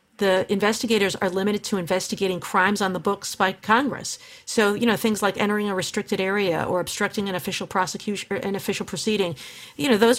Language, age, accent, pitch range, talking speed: English, 50-69, American, 190-230 Hz, 190 wpm